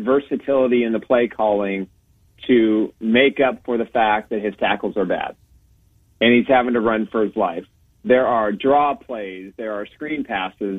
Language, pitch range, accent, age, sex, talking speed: English, 110-145 Hz, American, 40-59, male, 180 wpm